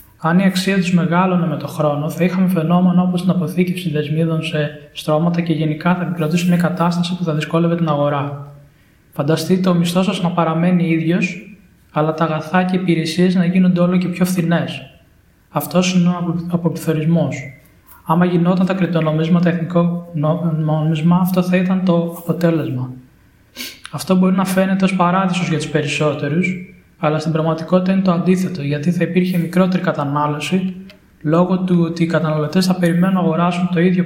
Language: Greek